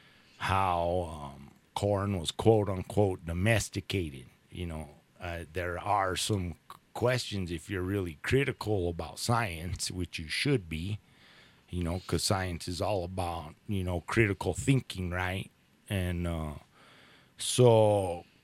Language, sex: English, male